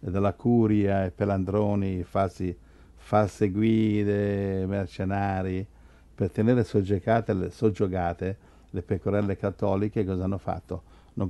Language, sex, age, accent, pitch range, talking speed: Italian, male, 50-69, native, 95-115 Hz, 105 wpm